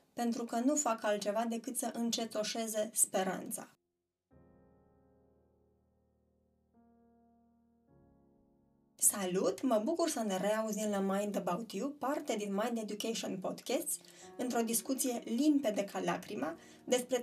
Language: Romanian